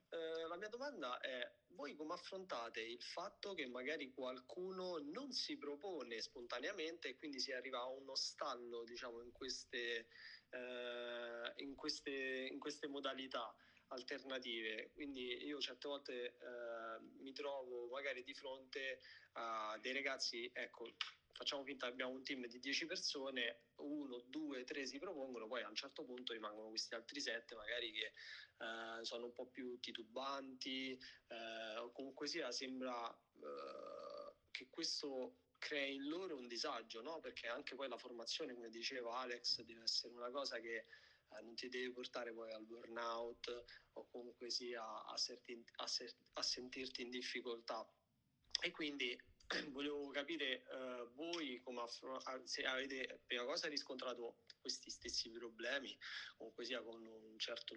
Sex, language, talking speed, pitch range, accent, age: male, Italian, 150 wpm, 120-140 Hz, native, 20-39